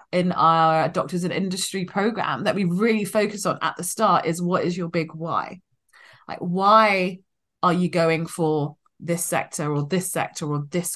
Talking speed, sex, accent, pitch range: 180 wpm, female, British, 165-210 Hz